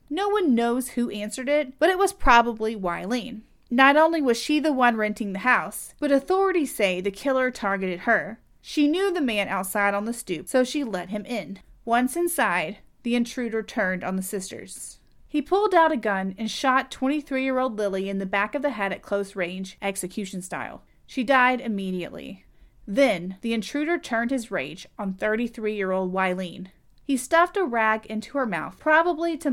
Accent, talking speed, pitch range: American, 180 wpm, 205-280 Hz